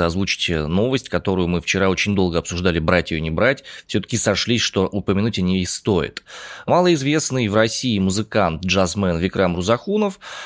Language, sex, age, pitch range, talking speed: Russian, male, 20-39, 95-140 Hz, 150 wpm